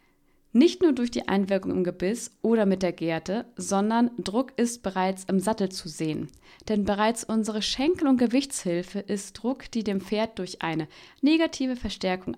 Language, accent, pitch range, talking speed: German, German, 190-235 Hz, 165 wpm